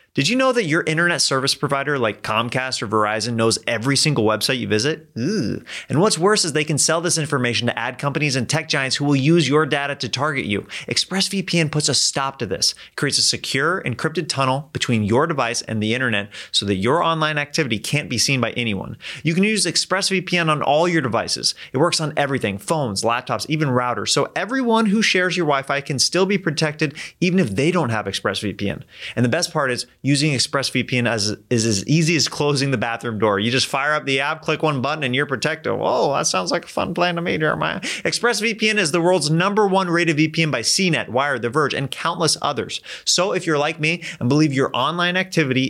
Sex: male